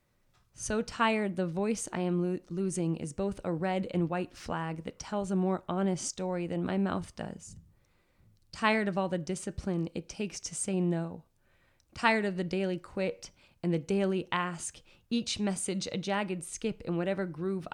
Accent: American